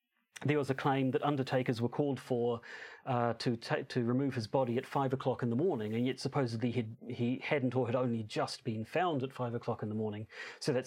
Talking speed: 230 wpm